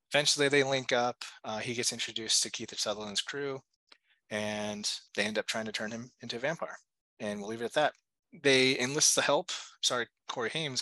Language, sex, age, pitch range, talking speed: English, male, 20-39, 105-130 Hz, 200 wpm